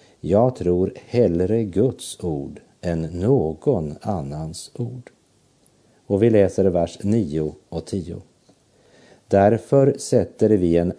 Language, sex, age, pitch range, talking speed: Swedish, male, 50-69, 85-115 Hz, 110 wpm